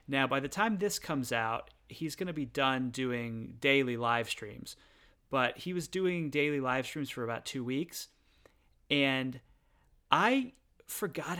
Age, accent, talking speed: 30-49, American, 160 wpm